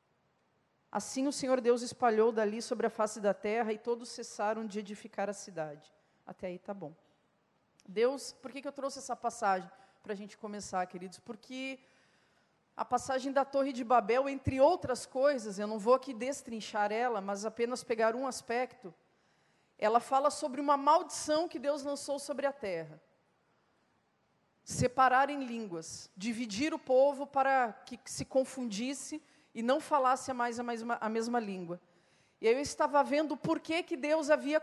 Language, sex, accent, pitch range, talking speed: Portuguese, female, Brazilian, 225-295 Hz, 165 wpm